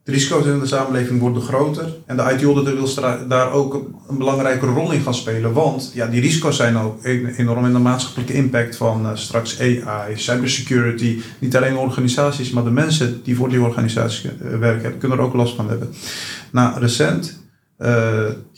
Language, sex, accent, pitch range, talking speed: Dutch, male, Dutch, 120-135 Hz, 185 wpm